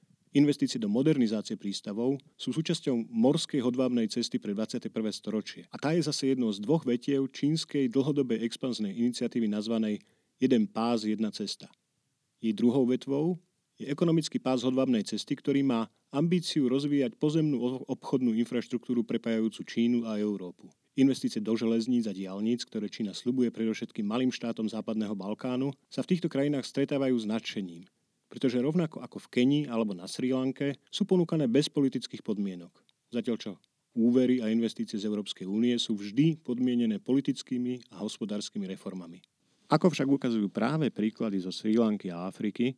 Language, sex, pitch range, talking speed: Slovak, male, 110-140 Hz, 150 wpm